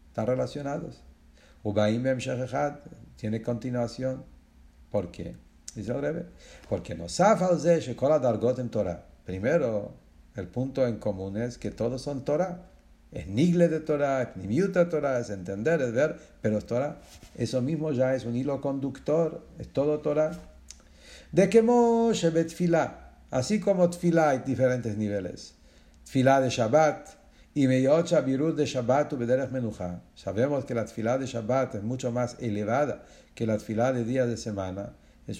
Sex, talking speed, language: male, 150 wpm, English